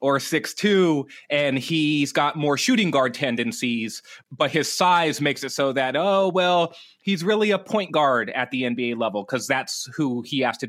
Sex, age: male, 30-49